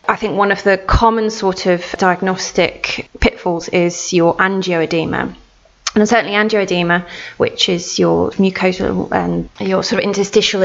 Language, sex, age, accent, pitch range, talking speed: English, female, 20-39, British, 175-195 Hz, 145 wpm